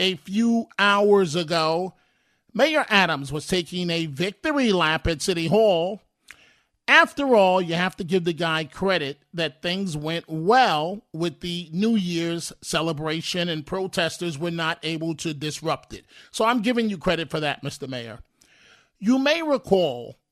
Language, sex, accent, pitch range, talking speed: English, male, American, 165-210 Hz, 155 wpm